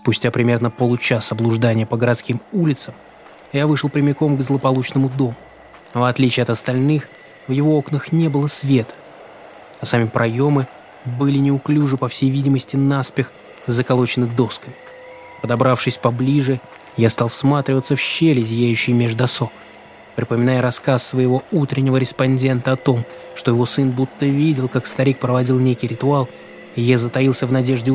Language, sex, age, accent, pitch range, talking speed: Russian, male, 20-39, native, 120-135 Hz, 140 wpm